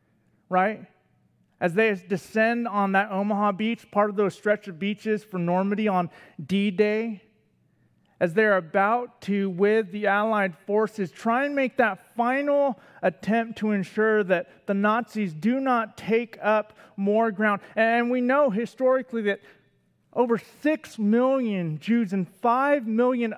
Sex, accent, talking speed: male, American, 140 wpm